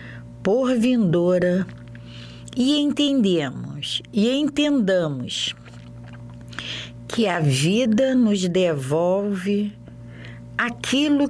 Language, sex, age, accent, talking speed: Portuguese, female, 50-69, Brazilian, 60 wpm